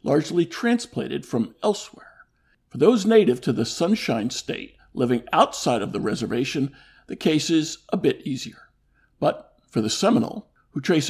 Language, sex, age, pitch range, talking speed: English, male, 50-69, 120-165 Hz, 150 wpm